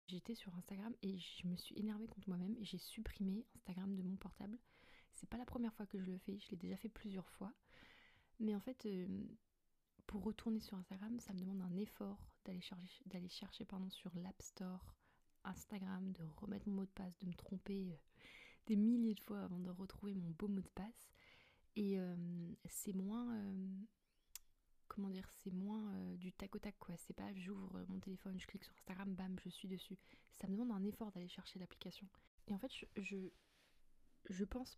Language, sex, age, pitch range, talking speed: French, female, 20-39, 185-210 Hz, 205 wpm